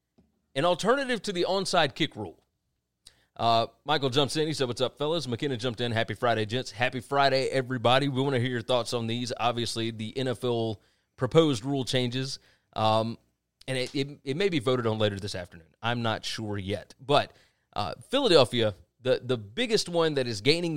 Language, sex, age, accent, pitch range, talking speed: English, male, 30-49, American, 110-150 Hz, 185 wpm